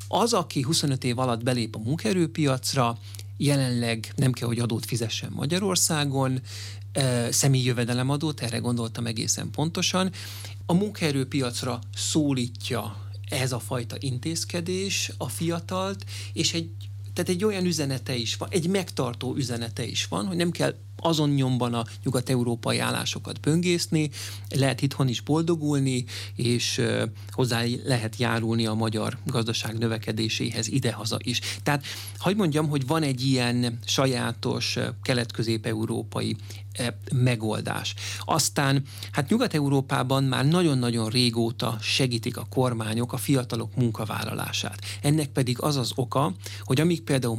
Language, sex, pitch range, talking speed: Hungarian, male, 110-140 Hz, 125 wpm